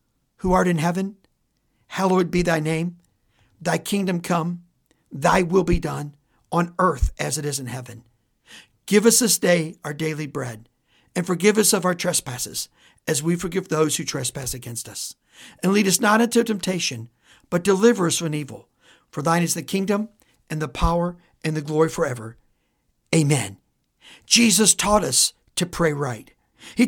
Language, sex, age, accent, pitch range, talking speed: English, male, 60-79, American, 150-210 Hz, 165 wpm